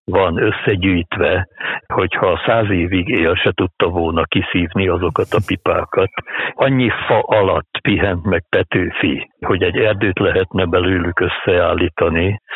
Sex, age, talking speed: male, 60-79, 120 wpm